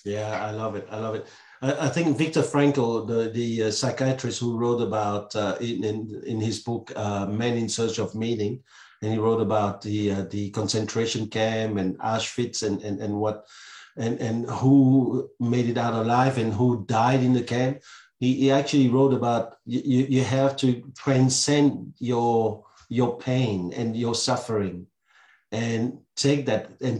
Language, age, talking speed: English, 50-69, 170 wpm